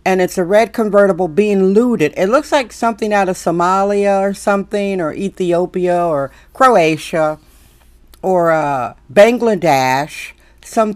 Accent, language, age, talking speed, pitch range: American, English, 50-69, 130 wpm, 170-205 Hz